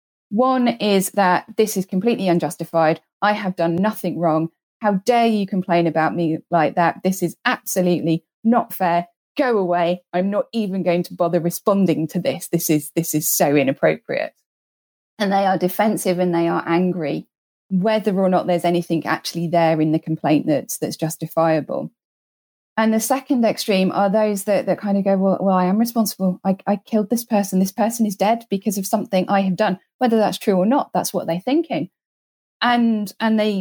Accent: British